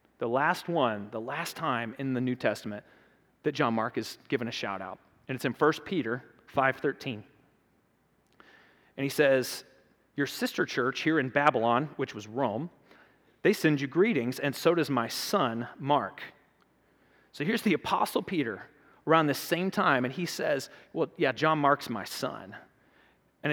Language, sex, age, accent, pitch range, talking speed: English, male, 30-49, American, 125-155 Hz, 165 wpm